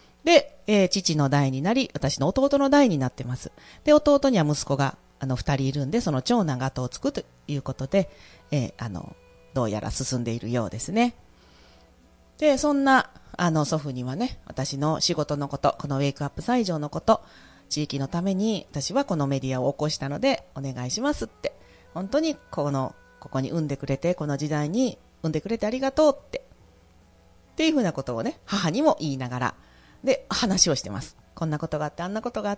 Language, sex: Japanese, female